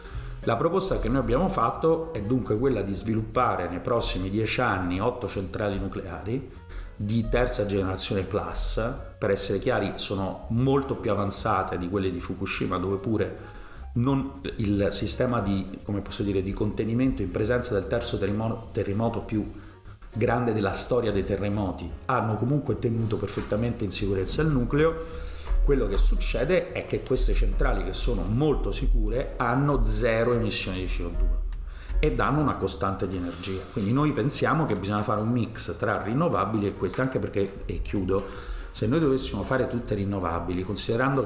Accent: native